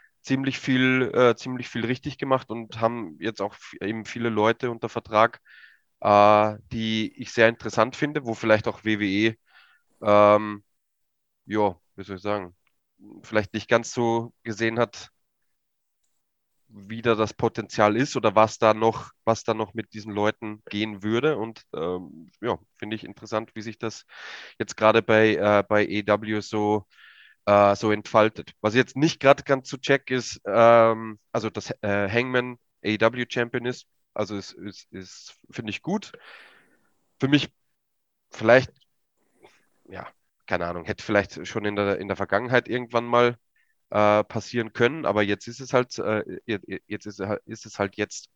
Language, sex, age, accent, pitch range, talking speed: German, male, 20-39, German, 105-120 Hz, 160 wpm